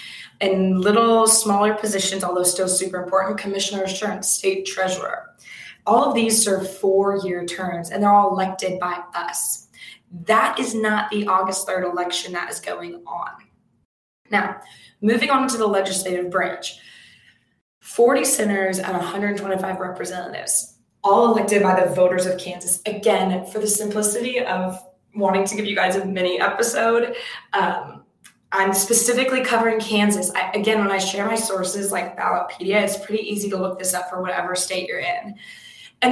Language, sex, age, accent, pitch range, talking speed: English, female, 20-39, American, 185-210 Hz, 155 wpm